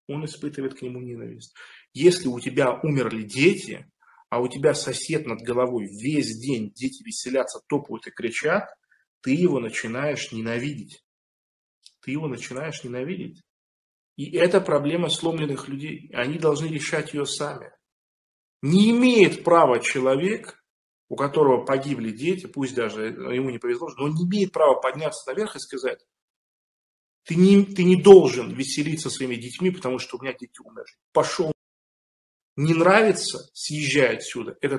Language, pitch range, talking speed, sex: Russian, 130-185 Hz, 140 wpm, male